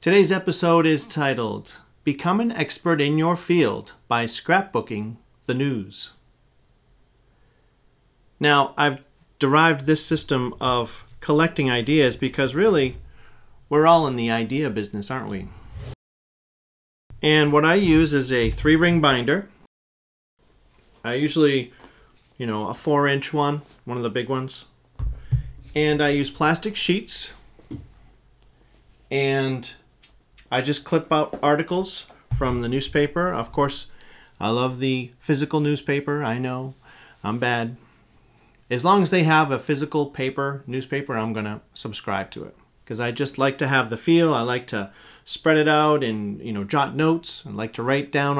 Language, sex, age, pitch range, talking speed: English, male, 40-59, 120-150 Hz, 145 wpm